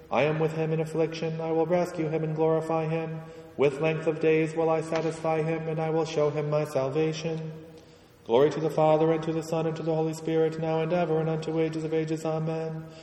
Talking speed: 230 wpm